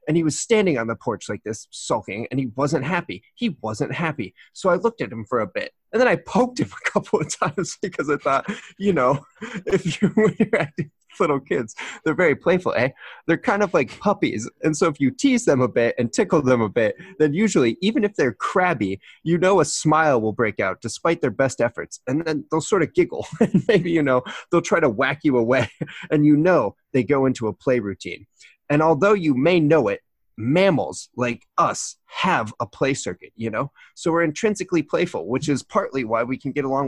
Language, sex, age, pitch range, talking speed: English, male, 30-49, 130-180 Hz, 225 wpm